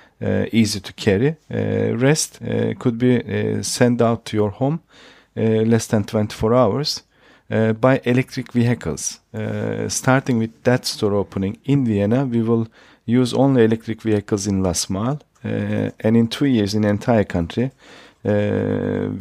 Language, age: German, 50-69